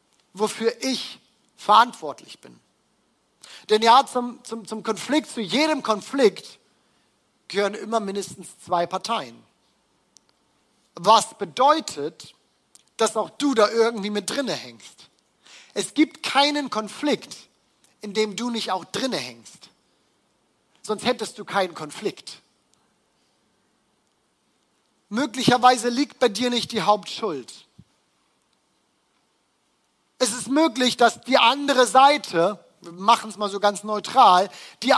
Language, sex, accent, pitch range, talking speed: German, male, German, 205-260 Hz, 110 wpm